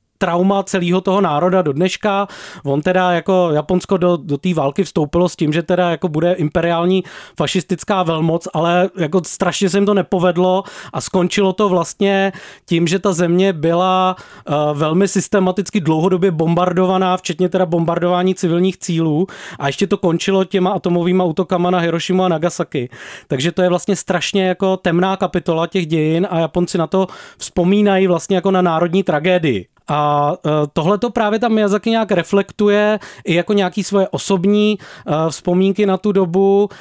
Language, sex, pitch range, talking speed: Czech, male, 170-195 Hz, 160 wpm